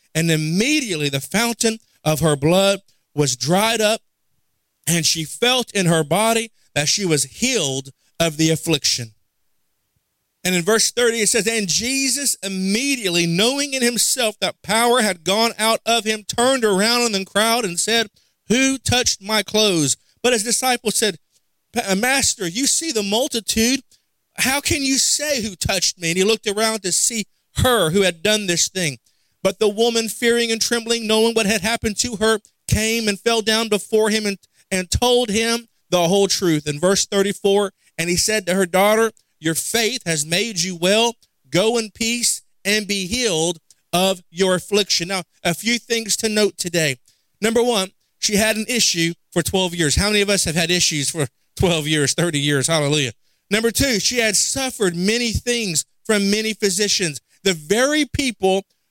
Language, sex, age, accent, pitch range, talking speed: English, male, 40-59, American, 170-230 Hz, 175 wpm